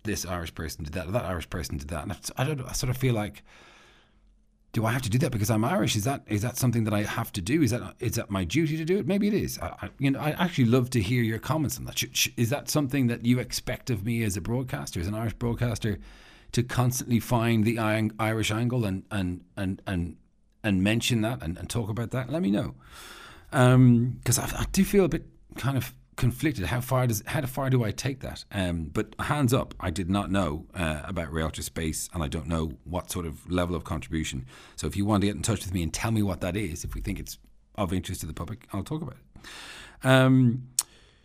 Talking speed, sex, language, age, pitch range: 250 wpm, male, English, 40-59, 95-125 Hz